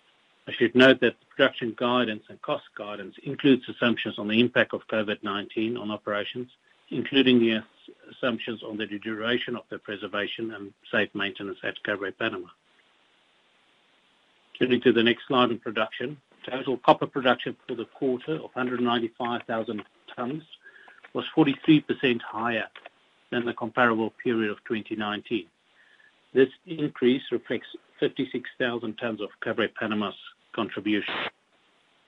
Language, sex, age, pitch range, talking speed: English, male, 50-69, 110-125 Hz, 125 wpm